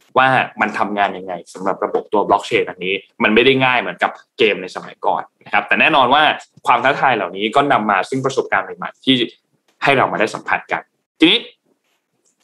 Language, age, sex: Thai, 20-39, male